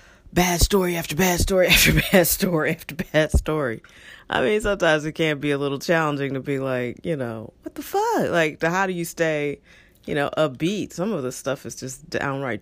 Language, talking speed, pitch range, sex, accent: English, 210 wpm, 135-175 Hz, female, American